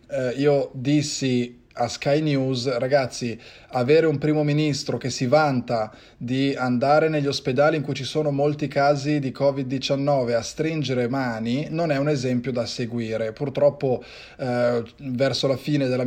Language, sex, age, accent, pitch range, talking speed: Italian, male, 20-39, native, 125-150 Hz, 150 wpm